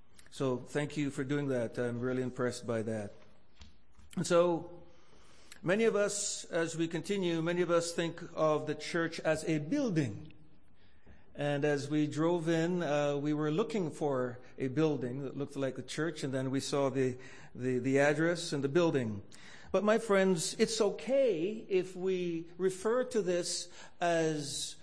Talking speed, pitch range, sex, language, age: 165 wpm, 135-180 Hz, male, English, 50-69